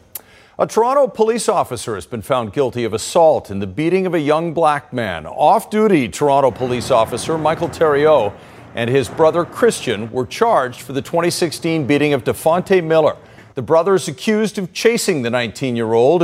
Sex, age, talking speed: male, 50-69, 165 wpm